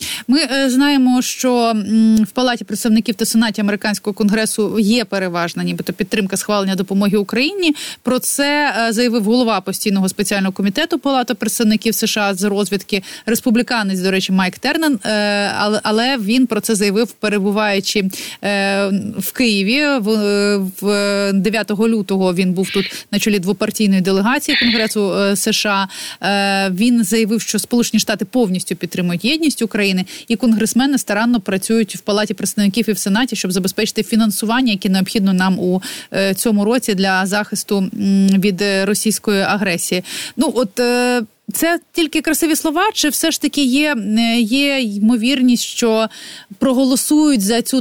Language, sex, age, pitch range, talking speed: Ukrainian, female, 30-49, 200-245 Hz, 130 wpm